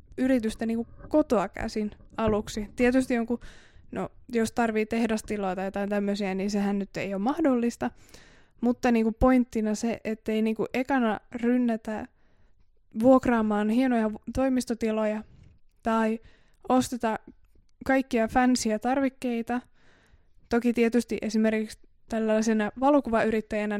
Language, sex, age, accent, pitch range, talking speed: Finnish, female, 20-39, native, 210-245 Hz, 100 wpm